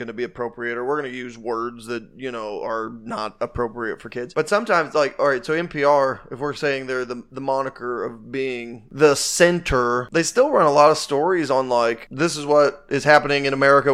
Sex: male